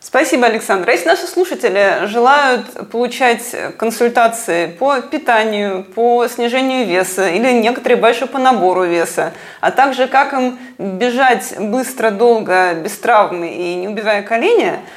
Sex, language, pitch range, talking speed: female, Russian, 210-305 Hz, 130 wpm